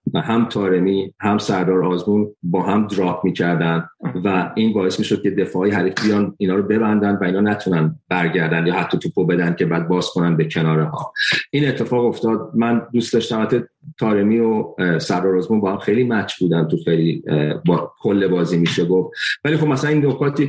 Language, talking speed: Persian, 185 wpm